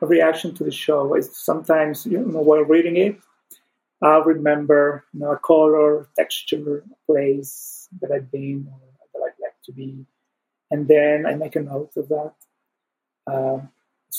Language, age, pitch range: English, 30-49, 145-165 Hz